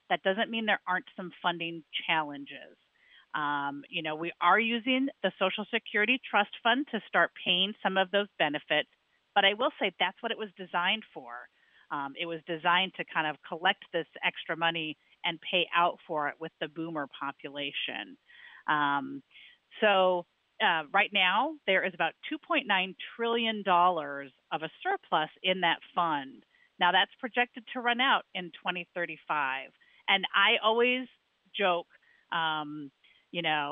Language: English